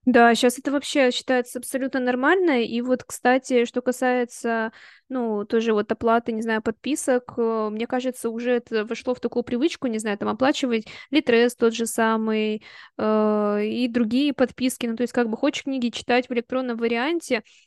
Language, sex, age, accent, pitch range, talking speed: Russian, female, 20-39, native, 225-250 Hz, 165 wpm